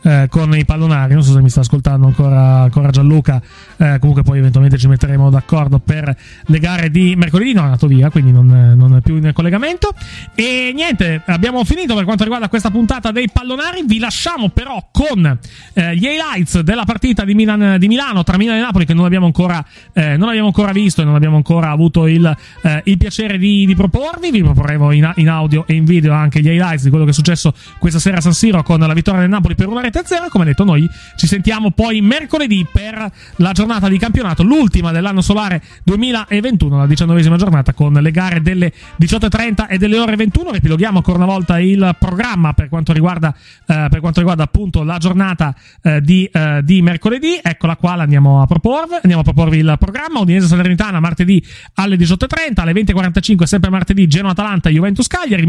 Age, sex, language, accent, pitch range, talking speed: 30-49, male, Italian, native, 155-210 Hz, 200 wpm